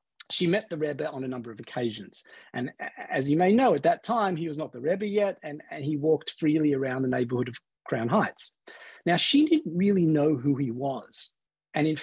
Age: 40-59